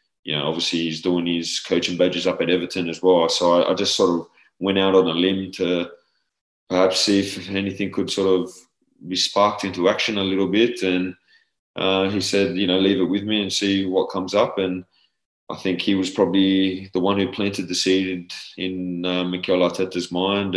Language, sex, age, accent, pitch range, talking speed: English, male, 20-39, Australian, 90-95 Hz, 210 wpm